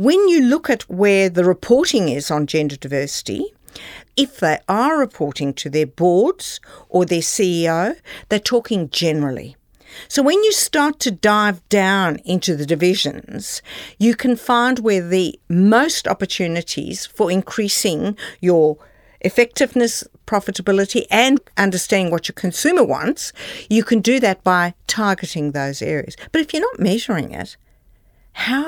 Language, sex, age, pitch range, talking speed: English, female, 50-69, 170-245 Hz, 140 wpm